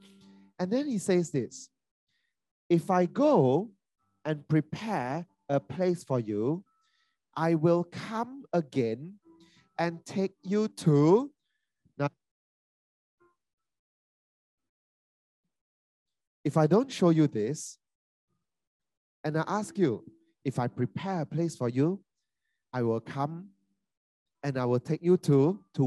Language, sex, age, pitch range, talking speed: English, male, 30-49, 145-225 Hz, 115 wpm